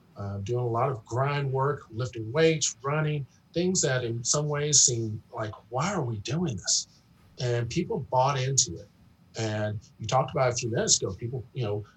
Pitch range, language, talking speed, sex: 110-135 Hz, English, 185 wpm, male